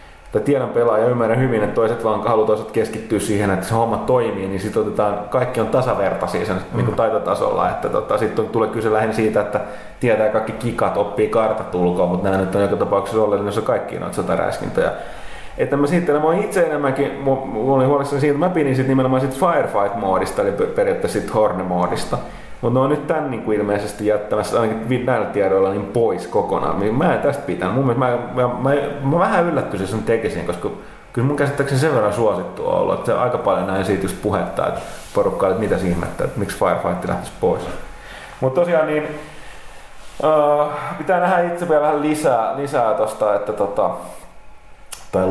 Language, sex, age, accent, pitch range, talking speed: Finnish, male, 30-49, native, 110-145 Hz, 180 wpm